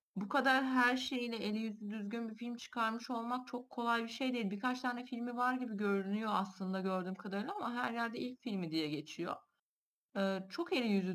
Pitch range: 180-235 Hz